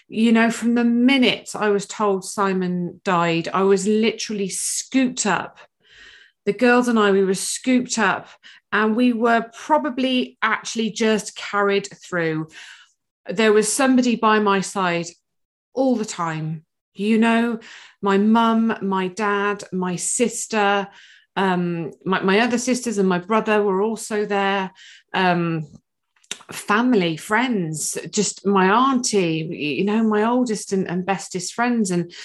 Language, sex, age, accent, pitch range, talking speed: English, female, 30-49, British, 185-225 Hz, 135 wpm